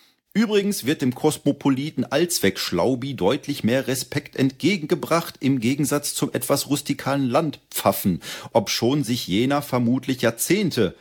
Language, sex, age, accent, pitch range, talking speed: German, male, 40-59, German, 100-140 Hz, 110 wpm